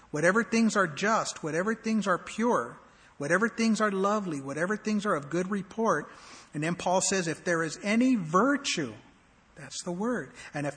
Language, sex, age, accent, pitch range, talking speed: English, male, 50-69, American, 155-205 Hz, 180 wpm